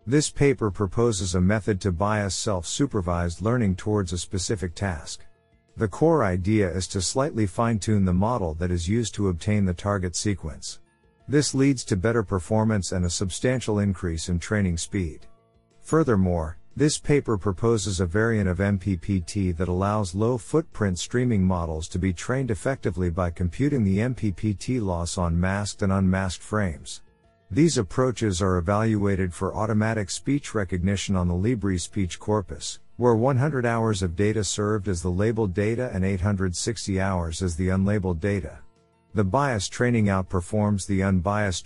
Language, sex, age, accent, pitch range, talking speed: English, male, 50-69, American, 90-115 Hz, 150 wpm